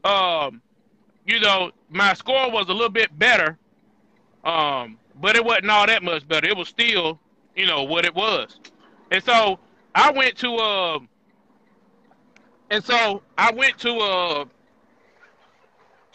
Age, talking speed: 30-49, 140 wpm